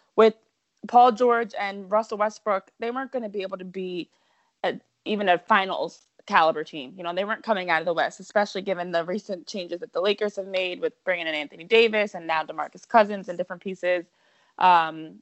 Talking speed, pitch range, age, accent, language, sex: 195 wpm, 180-225 Hz, 20-39, American, English, female